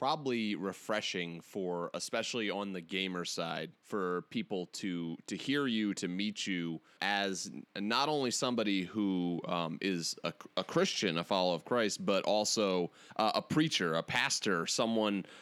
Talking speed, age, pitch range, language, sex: 150 wpm, 30-49, 95-125 Hz, English, male